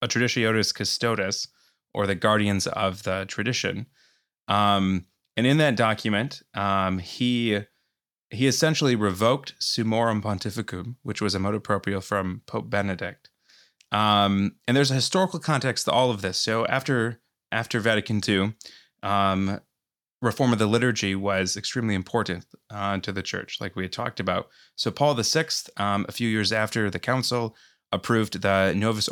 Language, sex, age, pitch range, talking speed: English, male, 20-39, 100-120 Hz, 155 wpm